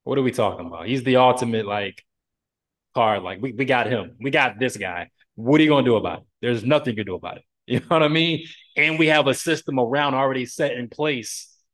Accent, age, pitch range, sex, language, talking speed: American, 20-39, 110-135 Hz, male, English, 245 wpm